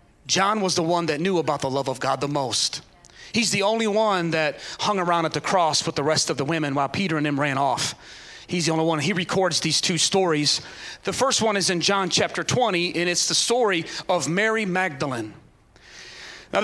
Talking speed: 215 wpm